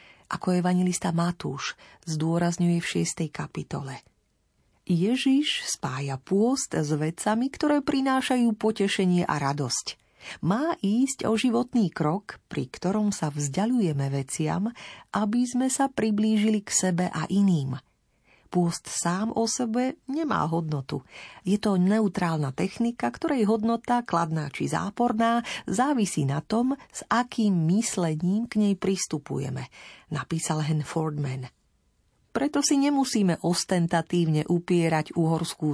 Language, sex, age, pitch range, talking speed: Slovak, female, 40-59, 155-220 Hz, 115 wpm